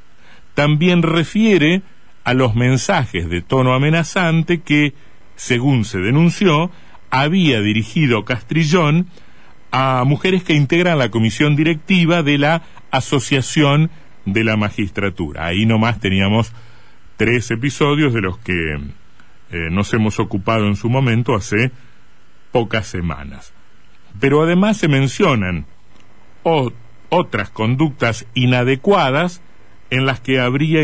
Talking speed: 110 wpm